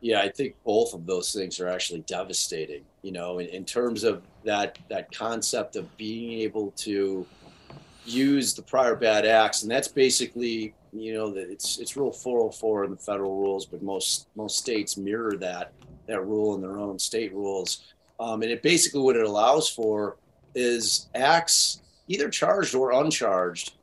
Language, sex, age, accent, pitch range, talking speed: English, male, 30-49, American, 105-140 Hz, 180 wpm